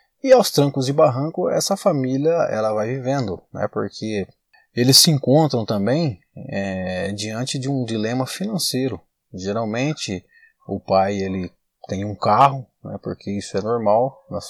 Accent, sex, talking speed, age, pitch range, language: Brazilian, male, 145 wpm, 20-39, 100-135 Hz, English